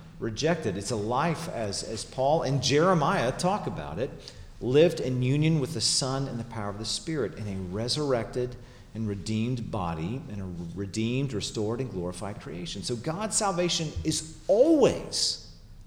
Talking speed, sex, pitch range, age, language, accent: 160 wpm, male, 95-125 Hz, 40-59, English, American